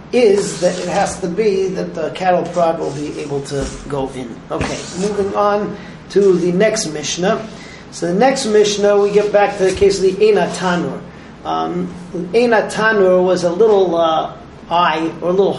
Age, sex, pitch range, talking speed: 40-59, male, 175-215 Hz, 185 wpm